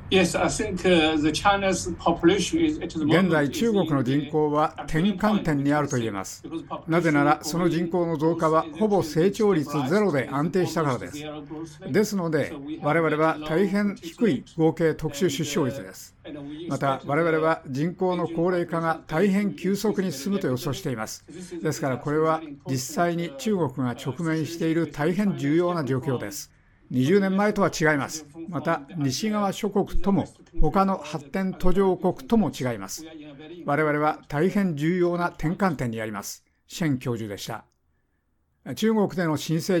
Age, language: 60-79, Japanese